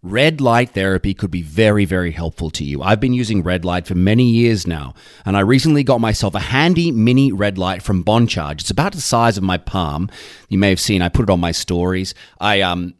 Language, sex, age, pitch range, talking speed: English, male, 30-49, 95-130 Hz, 230 wpm